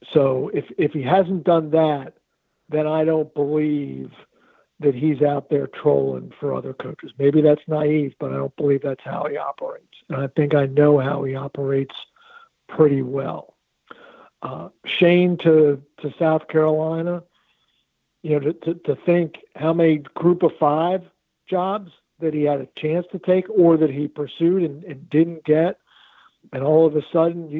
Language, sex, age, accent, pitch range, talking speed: English, male, 60-79, American, 145-175 Hz, 170 wpm